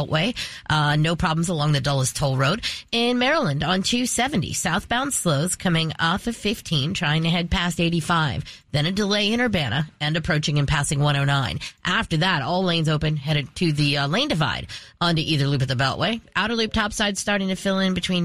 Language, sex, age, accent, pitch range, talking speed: English, female, 30-49, American, 150-200 Hz, 195 wpm